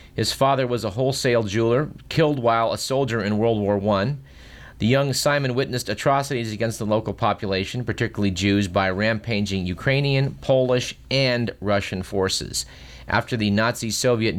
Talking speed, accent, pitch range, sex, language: 145 wpm, American, 100-125 Hz, male, English